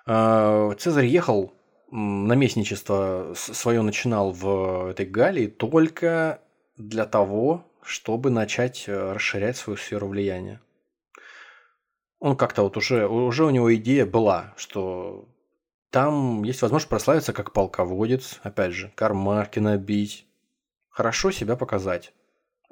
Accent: native